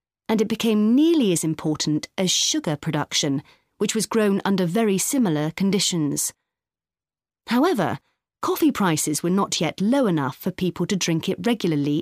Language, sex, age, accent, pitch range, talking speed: English, female, 30-49, British, 155-235 Hz, 150 wpm